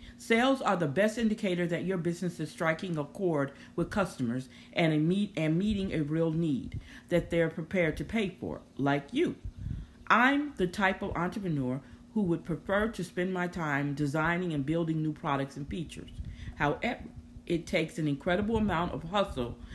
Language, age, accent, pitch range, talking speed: English, 50-69, American, 155-195 Hz, 170 wpm